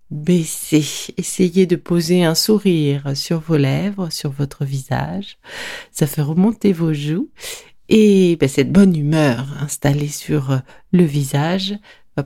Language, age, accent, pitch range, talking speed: French, 50-69, French, 150-215 Hz, 130 wpm